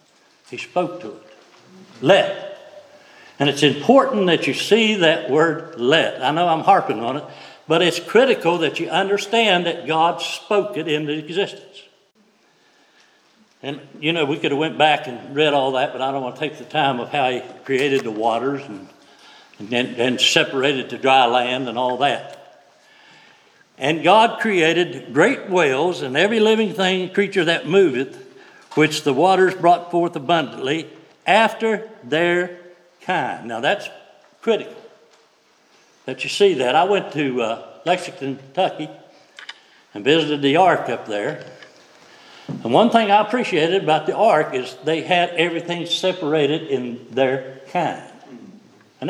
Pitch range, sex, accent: 140-195 Hz, male, American